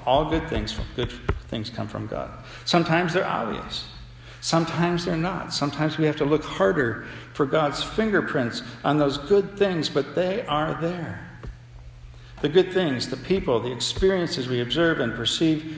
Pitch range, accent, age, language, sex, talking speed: 120-170 Hz, American, 60-79, English, male, 160 wpm